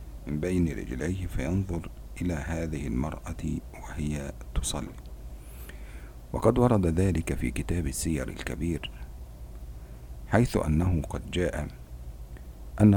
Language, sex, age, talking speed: Indonesian, male, 50-69, 95 wpm